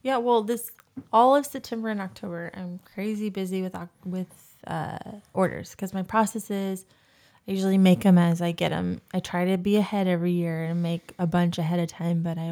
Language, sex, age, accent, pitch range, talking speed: English, female, 20-39, American, 175-200 Hz, 200 wpm